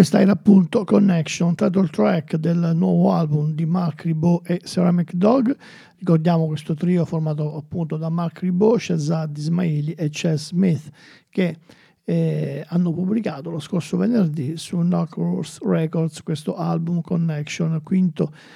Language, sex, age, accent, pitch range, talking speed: Italian, male, 50-69, native, 160-185 Hz, 140 wpm